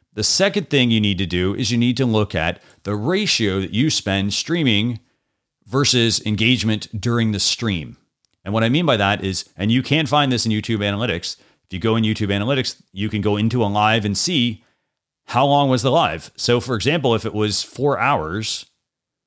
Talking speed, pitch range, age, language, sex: 205 wpm, 100-130 Hz, 40-59, English, male